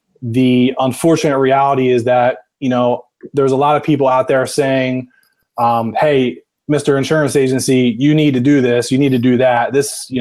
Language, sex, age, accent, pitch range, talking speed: English, male, 20-39, American, 120-135 Hz, 190 wpm